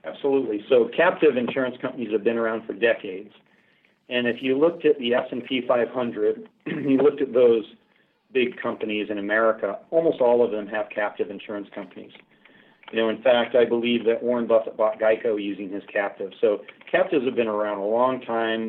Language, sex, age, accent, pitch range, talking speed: English, male, 40-59, American, 105-130 Hz, 180 wpm